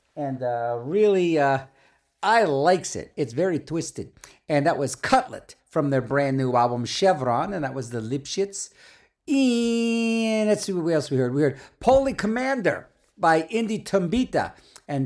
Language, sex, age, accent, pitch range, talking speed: English, male, 50-69, American, 130-190 Hz, 160 wpm